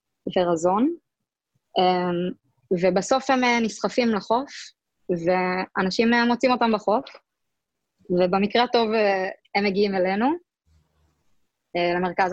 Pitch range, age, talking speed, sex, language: 190-225 Hz, 20-39, 75 wpm, female, Hebrew